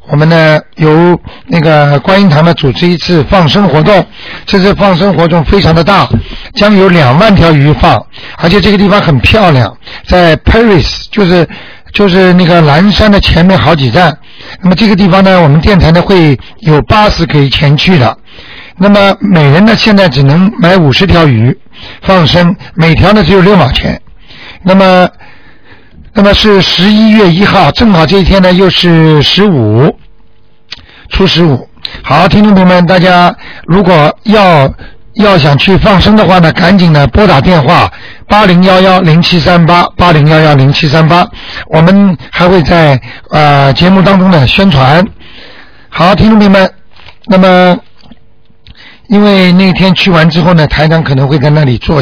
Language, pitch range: Chinese, 150-195 Hz